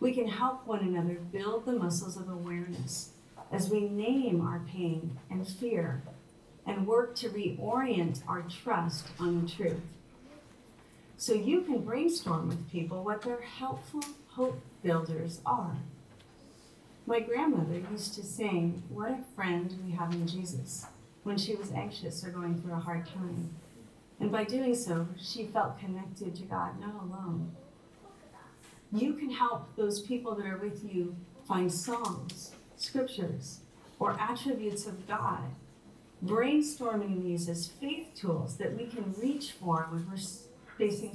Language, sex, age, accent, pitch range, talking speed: English, female, 40-59, American, 170-225 Hz, 145 wpm